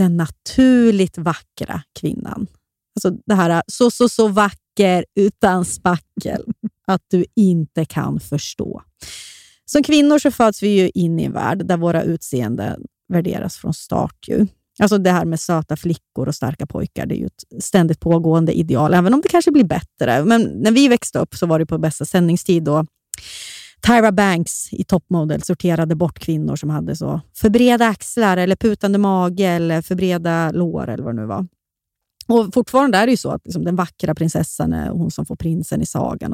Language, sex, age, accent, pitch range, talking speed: Swedish, female, 30-49, native, 165-220 Hz, 180 wpm